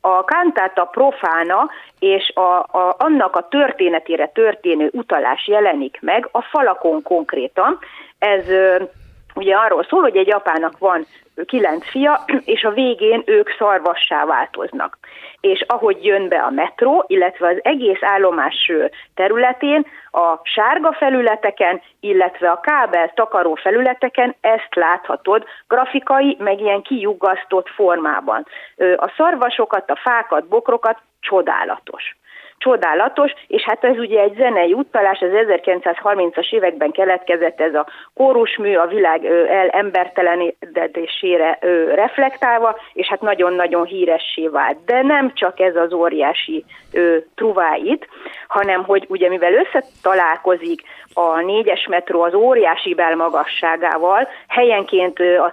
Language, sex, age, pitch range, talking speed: Hungarian, female, 30-49, 175-250 Hz, 115 wpm